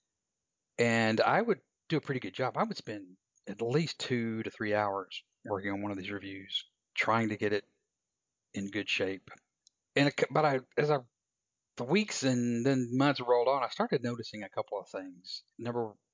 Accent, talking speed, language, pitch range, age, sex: American, 190 wpm, English, 110-135 Hz, 40-59, male